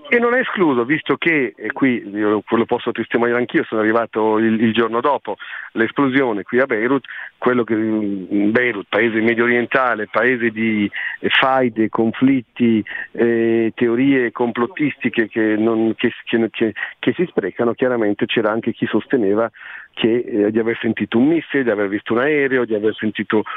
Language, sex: Italian, male